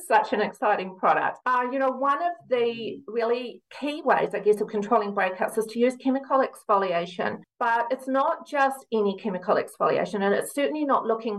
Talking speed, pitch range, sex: 185 wpm, 200-250 Hz, female